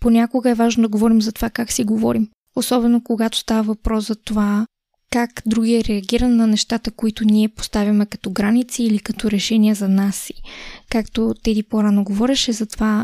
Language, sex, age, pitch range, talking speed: Bulgarian, female, 20-39, 215-245 Hz, 180 wpm